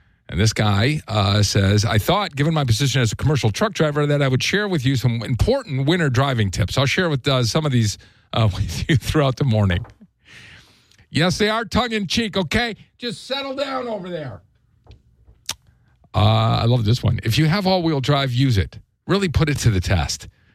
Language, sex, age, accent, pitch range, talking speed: English, male, 50-69, American, 120-195 Hz, 195 wpm